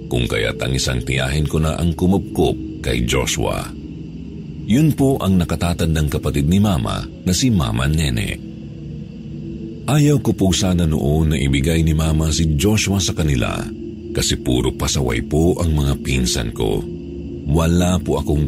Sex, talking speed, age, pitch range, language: male, 145 wpm, 50-69, 75-95 Hz, Filipino